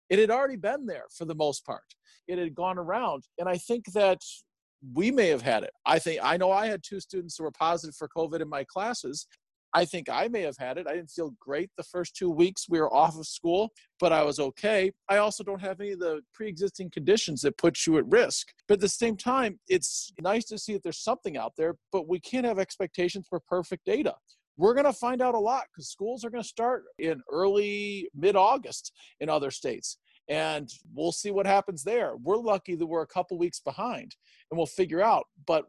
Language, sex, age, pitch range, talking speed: English, male, 40-59, 160-210 Hz, 230 wpm